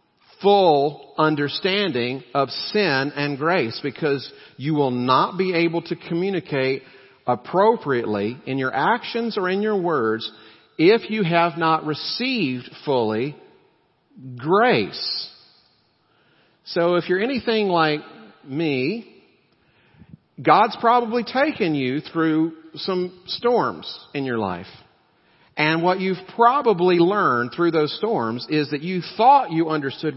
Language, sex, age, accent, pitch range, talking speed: English, male, 50-69, American, 135-180 Hz, 115 wpm